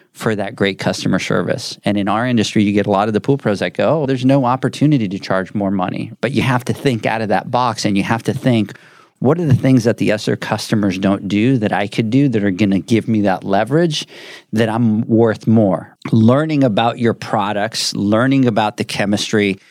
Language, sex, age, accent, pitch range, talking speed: English, male, 40-59, American, 105-125 Hz, 230 wpm